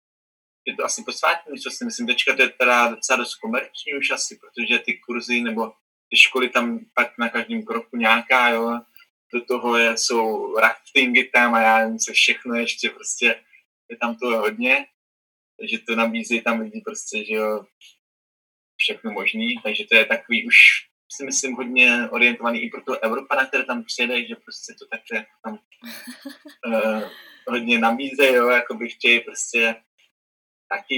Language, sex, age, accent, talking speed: Czech, male, 20-39, native, 165 wpm